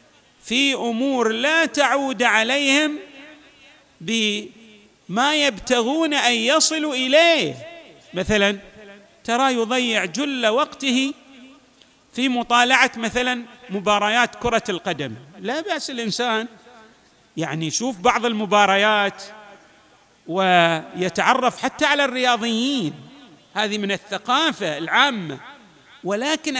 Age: 40-59